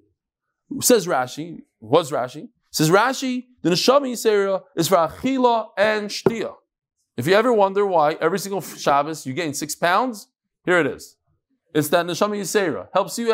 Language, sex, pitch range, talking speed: English, male, 155-240 Hz, 155 wpm